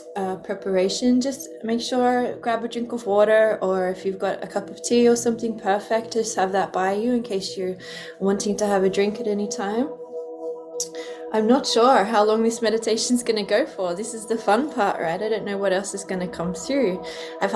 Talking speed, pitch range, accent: 225 wpm, 170-215 Hz, Australian